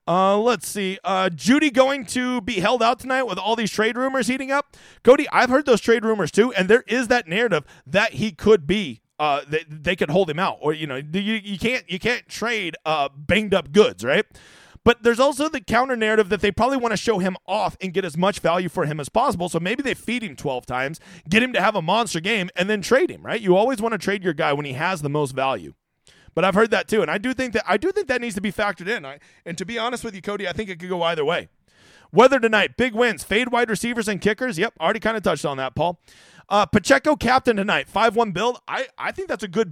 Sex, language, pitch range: male, English, 170-230 Hz